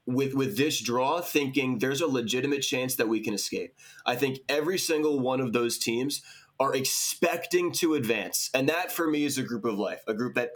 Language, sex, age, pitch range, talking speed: English, male, 20-39, 115-145 Hz, 210 wpm